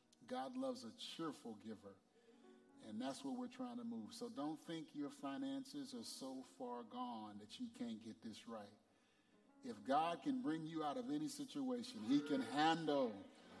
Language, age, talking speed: English, 40-59, 170 wpm